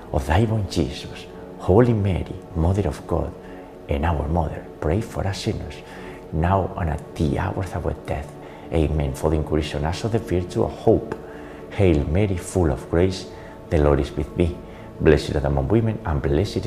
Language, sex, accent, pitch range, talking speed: English, male, Spanish, 75-95 Hz, 175 wpm